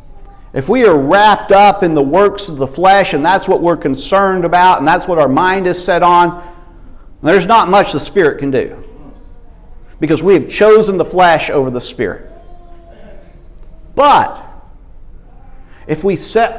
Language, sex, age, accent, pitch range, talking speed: English, male, 50-69, American, 145-195 Hz, 165 wpm